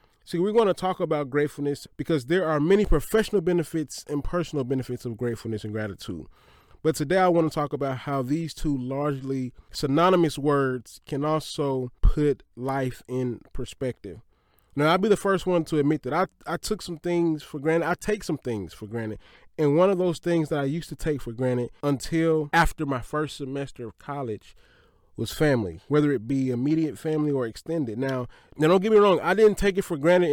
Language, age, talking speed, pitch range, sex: English, 20-39, 200 wpm, 125-165 Hz, male